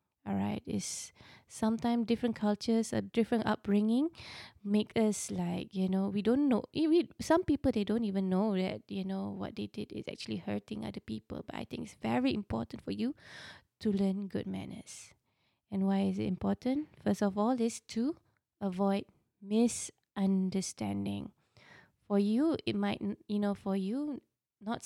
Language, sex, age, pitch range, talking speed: English, female, 20-39, 190-230 Hz, 160 wpm